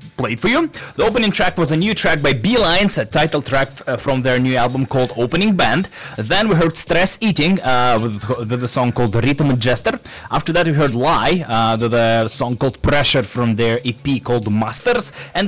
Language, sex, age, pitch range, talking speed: English, male, 20-39, 110-160 Hz, 210 wpm